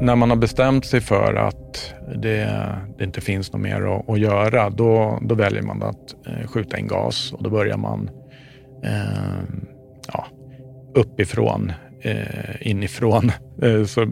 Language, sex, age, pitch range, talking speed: English, male, 40-59, 105-125 Hz, 150 wpm